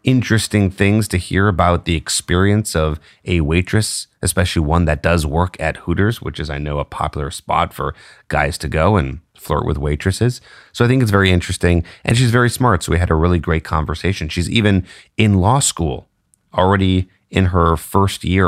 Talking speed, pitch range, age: 190 wpm, 80-105 Hz, 30-49